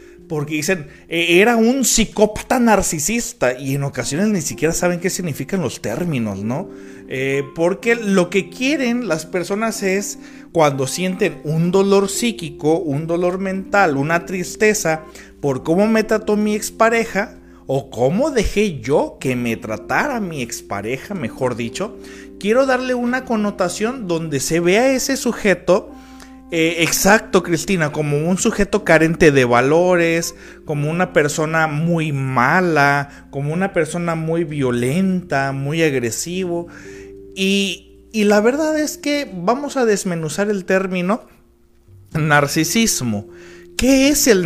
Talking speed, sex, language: 130 wpm, male, Spanish